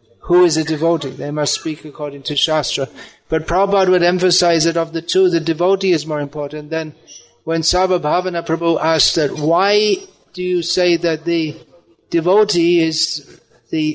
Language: English